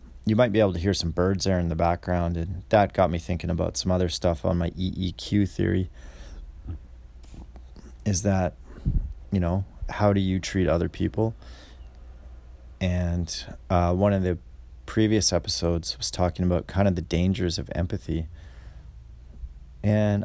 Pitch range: 65-95 Hz